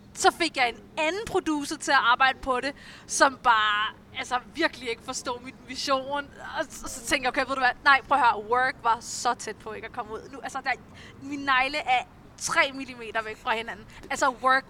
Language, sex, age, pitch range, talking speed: Danish, female, 20-39, 240-290 Hz, 210 wpm